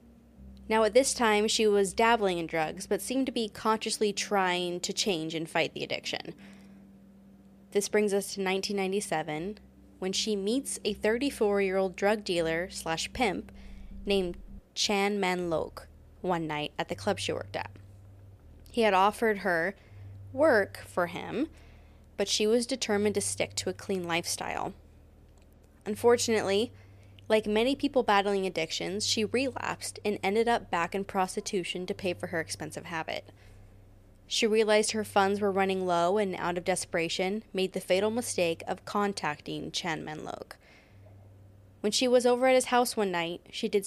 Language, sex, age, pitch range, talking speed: English, female, 20-39, 155-210 Hz, 155 wpm